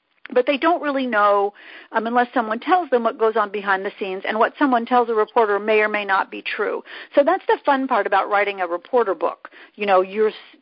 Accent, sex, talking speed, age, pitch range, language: American, female, 230 wpm, 50-69, 205-280 Hz, English